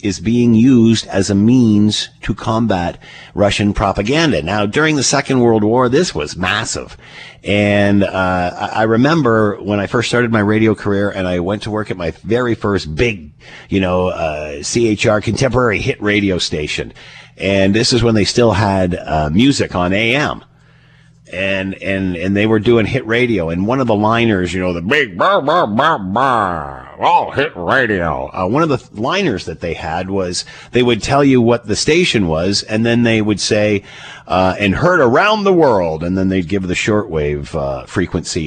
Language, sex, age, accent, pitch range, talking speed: English, male, 50-69, American, 90-115 Hz, 185 wpm